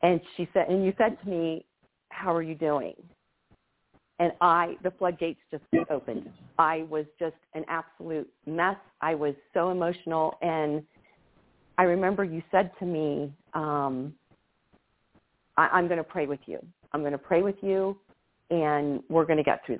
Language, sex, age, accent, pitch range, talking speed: English, female, 40-59, American, 150-175 Hz, 165 wpm